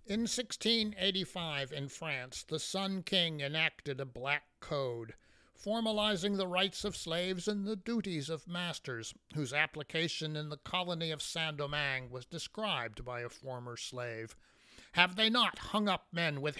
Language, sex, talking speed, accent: English, male, 150 wpm, American